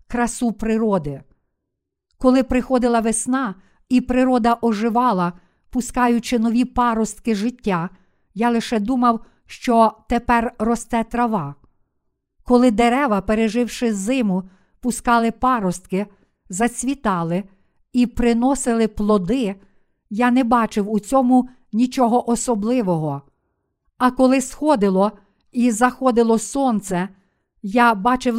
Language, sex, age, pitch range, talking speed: Ukrainian, female, 50-69, 210-250 Hz, 95 wpm